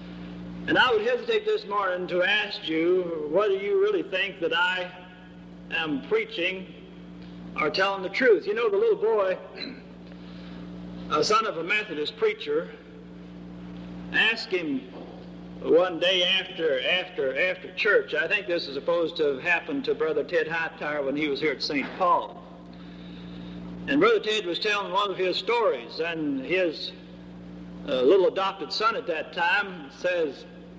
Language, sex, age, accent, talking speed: English, male, 50-69, American, 150 wpm